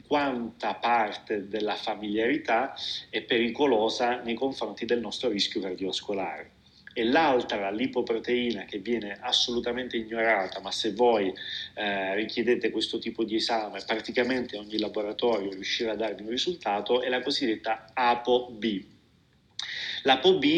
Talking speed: 120 wpm